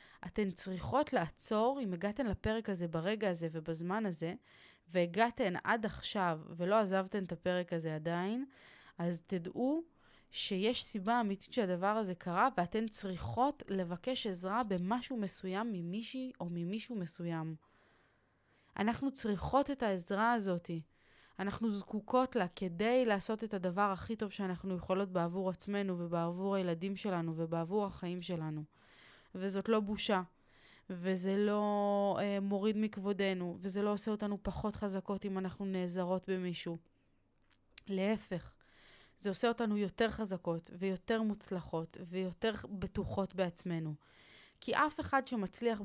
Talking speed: 125 wpm